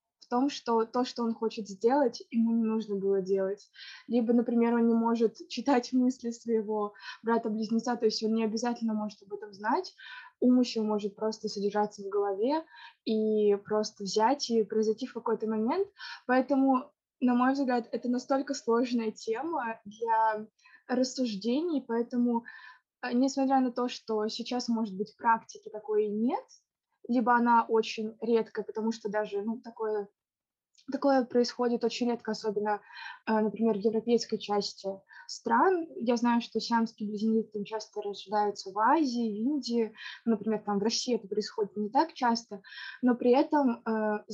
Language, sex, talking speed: Russian, female, 145 wpm